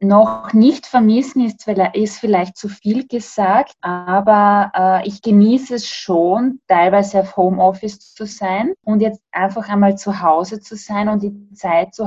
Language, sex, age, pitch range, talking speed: German, female, 20-39, 185-215 Hz, 155 wpm